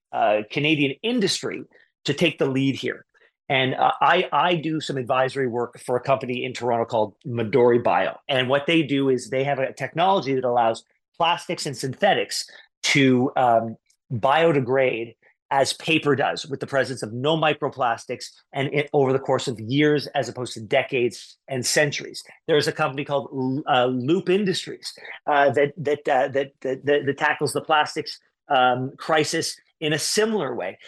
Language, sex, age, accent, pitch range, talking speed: English, male, 40-59, American, 130-165 Hz, 160 wpm